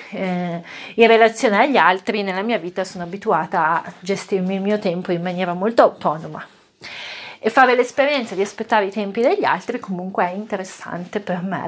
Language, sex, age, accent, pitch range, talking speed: Italian, female, 30-49, native, 190-230 Hz, 165 wpm